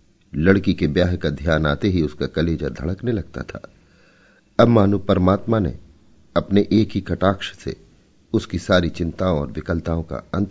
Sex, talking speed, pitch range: male, 155 wpm, 80-110 Hz